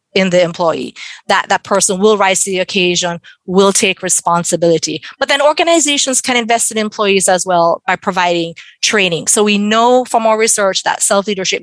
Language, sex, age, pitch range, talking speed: English, female, 30-49, 180-220 Hz, 175 wpm